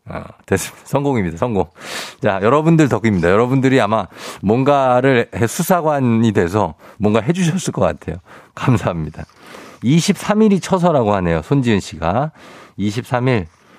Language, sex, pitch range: Korean, male, 105-160 Hz